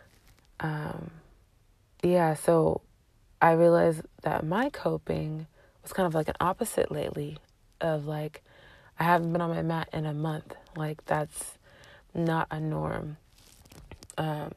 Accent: American